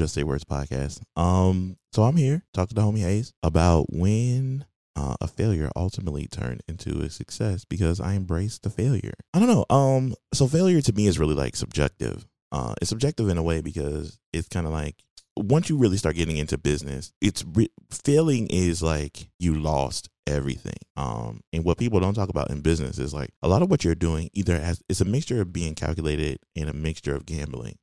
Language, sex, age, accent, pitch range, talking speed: English, male, 20-39, American, 75-100 Hz, 205 wpm